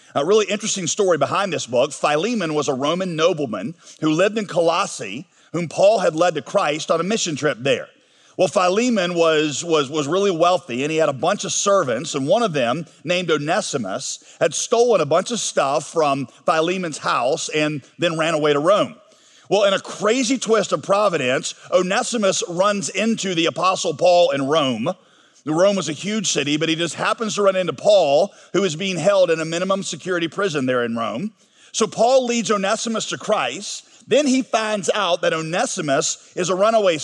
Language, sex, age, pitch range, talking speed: English, male, 40-59, 165-220 Hz, 190 wpm